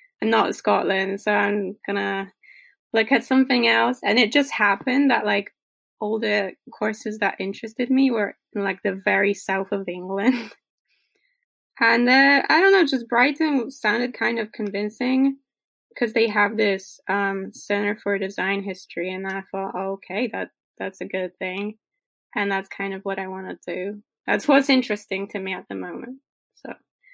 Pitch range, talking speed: 195-265 Hz, 170 wpm